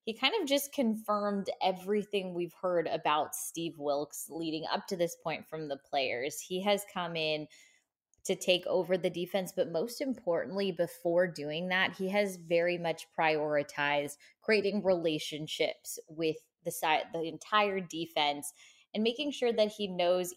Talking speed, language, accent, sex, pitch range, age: 155 wpm, English, American, female, 160-195 Hz, 20-39